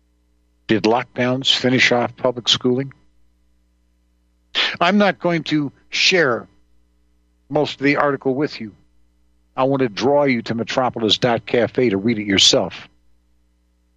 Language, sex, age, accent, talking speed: English, male, 50-69, American, 120 wpm